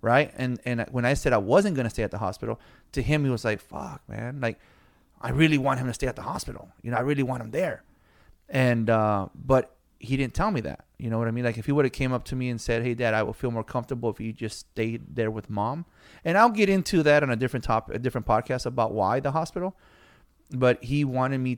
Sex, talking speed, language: male, 265 wpm, English